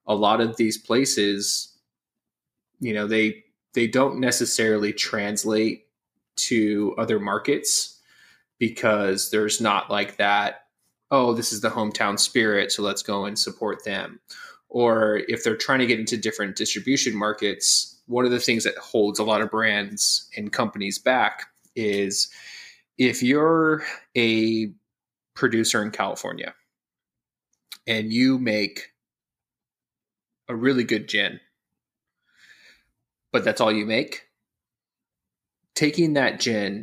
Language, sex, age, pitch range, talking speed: English, male, 20-39, 105-120 Hz, 125 wpm